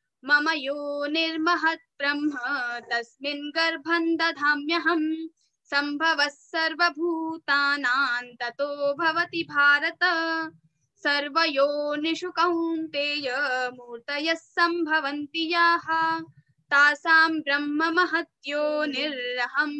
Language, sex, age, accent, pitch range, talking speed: Hindi, female, 20-39, native, 285-330 Hz, 40 wpm